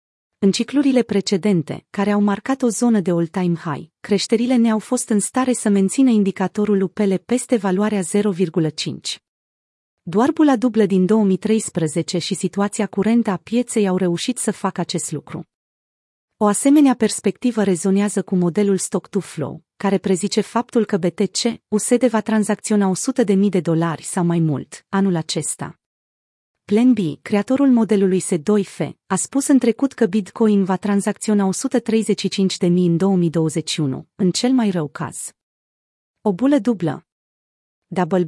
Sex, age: female, 30-49